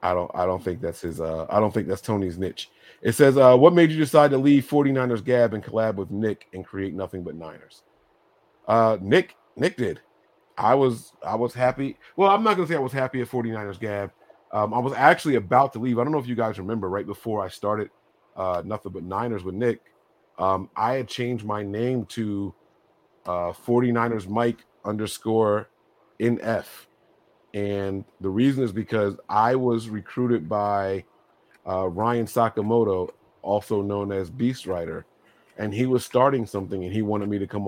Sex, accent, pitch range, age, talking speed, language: male, American, 95-120 Hz, 30-49, 190 wpm, English